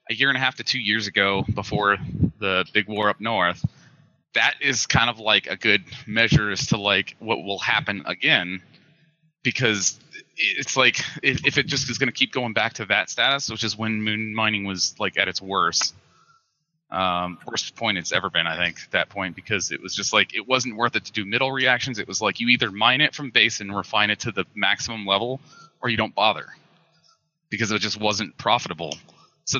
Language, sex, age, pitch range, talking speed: English, male, 30-49, 105-135 Hz, 215 wpm